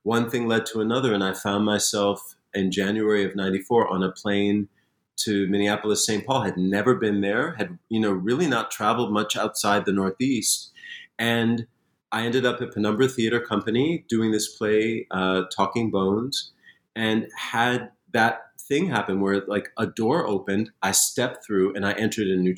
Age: 30-49